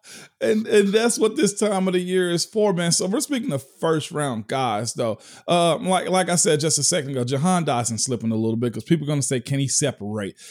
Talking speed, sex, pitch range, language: 245 wpm, male, 140-180 Hz, English